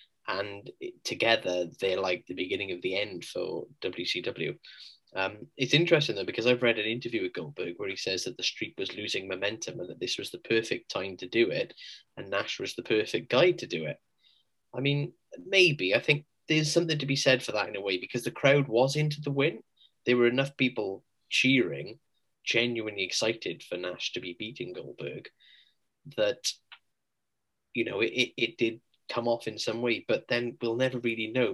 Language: English